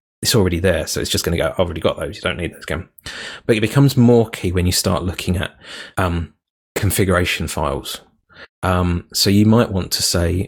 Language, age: English, 30-49